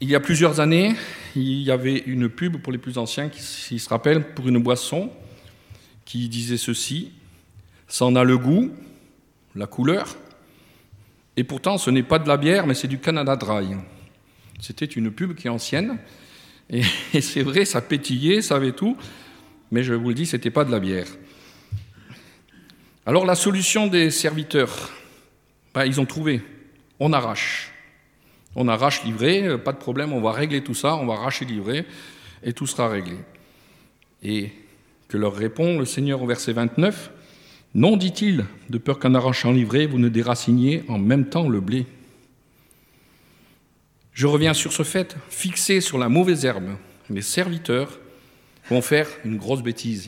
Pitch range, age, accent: 115-150 Hz, 50-69, French